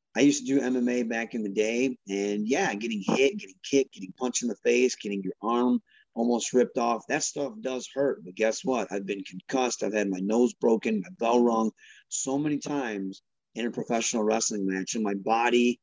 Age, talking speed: 30-49, 210 wpm